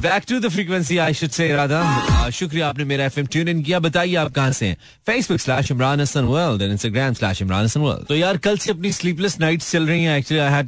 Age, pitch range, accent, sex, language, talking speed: 30-49, 125-170 Hz, native, male, Hindi, 150 wpm